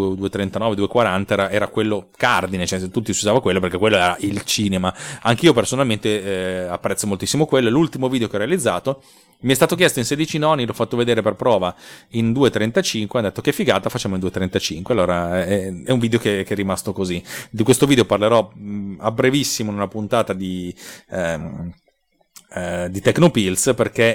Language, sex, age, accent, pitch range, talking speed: Italian, male, 30-49, native, 100-130 Hz, 185 wpm